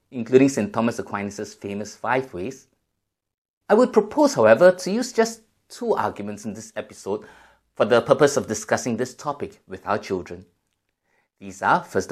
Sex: male